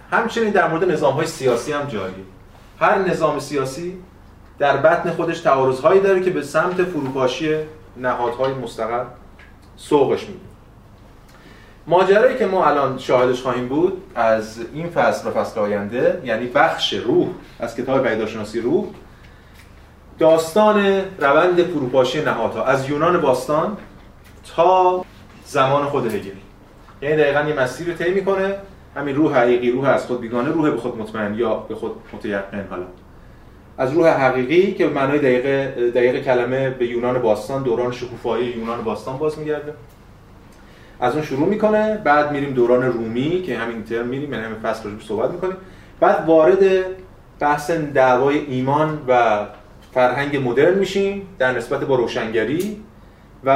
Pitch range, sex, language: 120-170 Hz, male, Persian